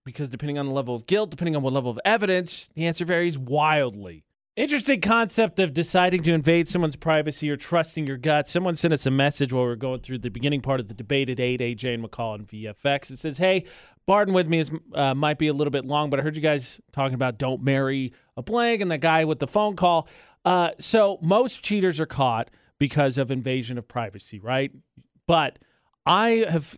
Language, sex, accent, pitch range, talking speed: English, male, American, 135-170 Hz, 220 wpm